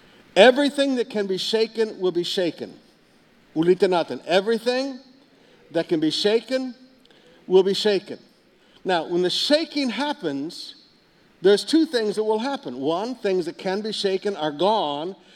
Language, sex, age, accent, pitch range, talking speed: English, male, 60-79, American, 165-230 Hz, 135 wpm